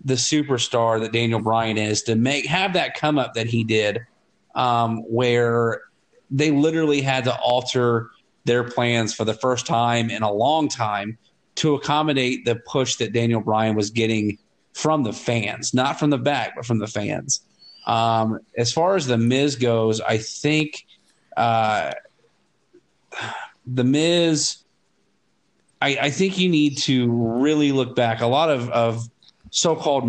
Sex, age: male, 40-59